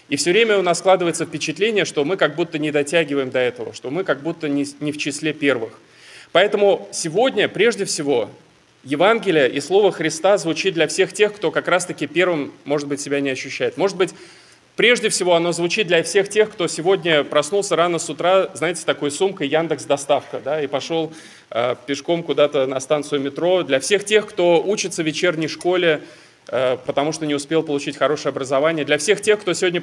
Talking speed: 190 wpm